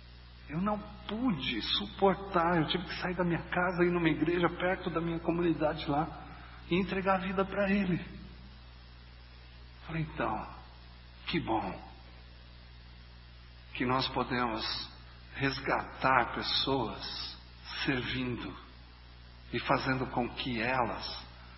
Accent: Brazilian